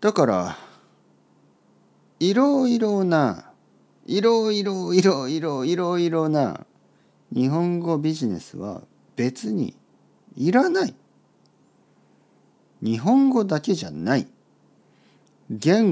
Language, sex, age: Japanese, male, 50-69